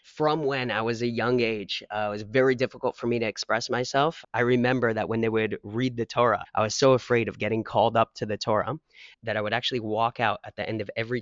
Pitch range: 115-135 Hz